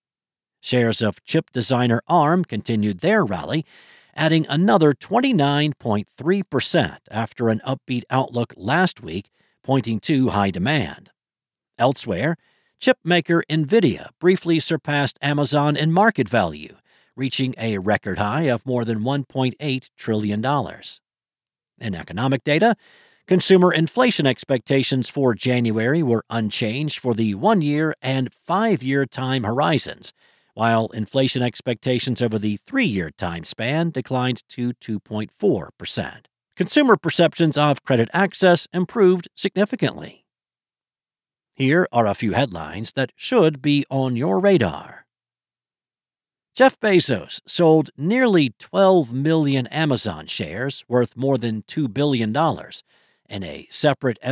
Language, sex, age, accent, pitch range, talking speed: English, male, 50-69, American, 120-165 Hz, 115 wpm